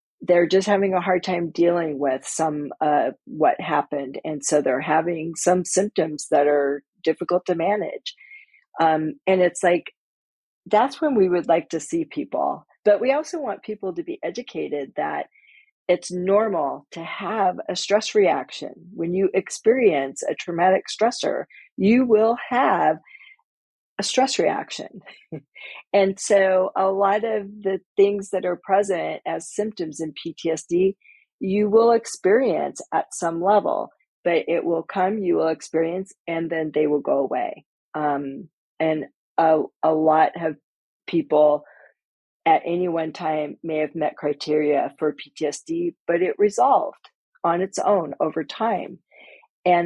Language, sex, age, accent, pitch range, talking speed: English, female, 50-69, American, 160-220 Hz, 145 wpm